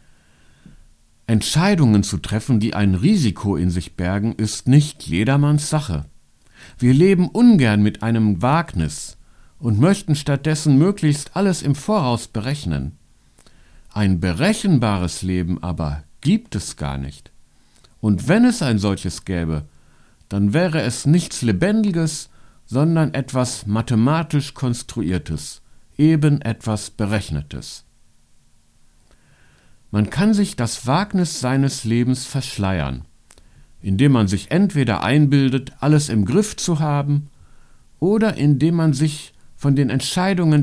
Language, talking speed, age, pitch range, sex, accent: German, 115 wpm, 60-79, 100-155 Hz, male, German